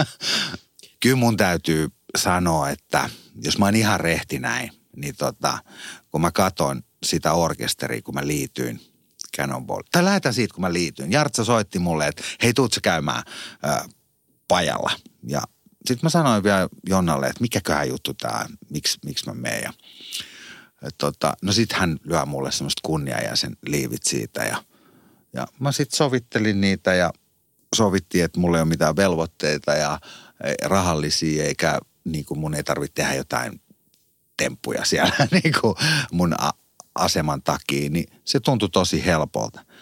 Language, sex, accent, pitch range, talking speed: Finnish, male, native, 75-115 Hz, 145 wpm